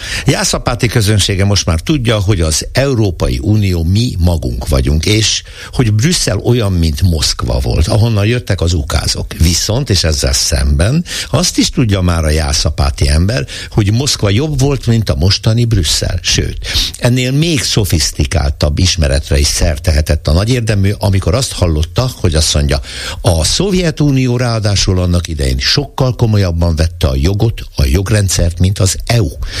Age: 60-79